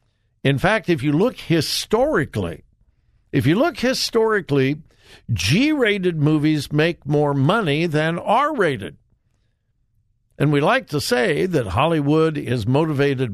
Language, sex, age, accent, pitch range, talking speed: English, male, 60-79, American, 115-170 Hz, 115 wpm